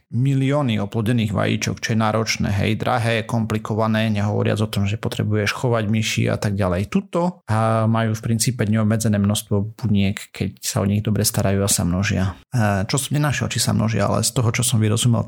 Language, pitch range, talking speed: Slovak, 110-125 Hz, 190 wpm